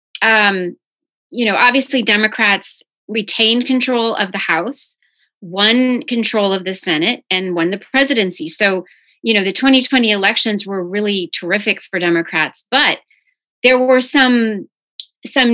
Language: English